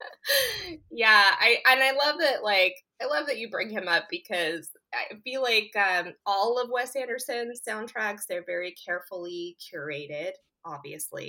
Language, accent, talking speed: English, American, 155 wpm